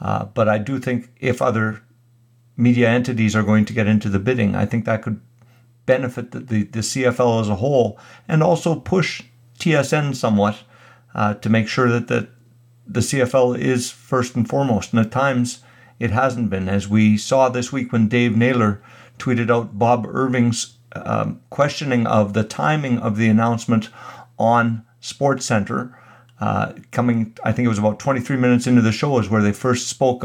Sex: male